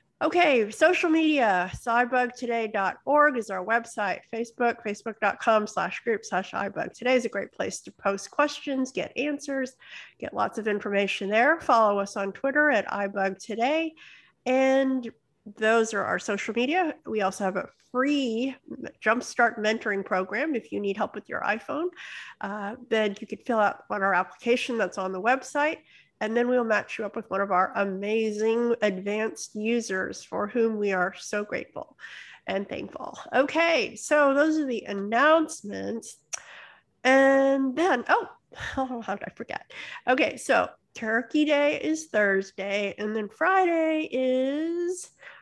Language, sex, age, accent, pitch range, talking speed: English, female, 50-69, American, 210-280 Hz, 150 wpm